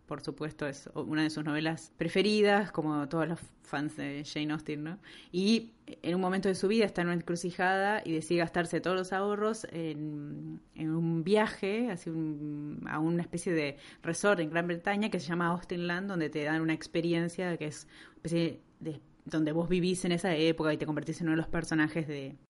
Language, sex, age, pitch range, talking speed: Spanish, female, 20-39, 150-175 Hz, 200 wpm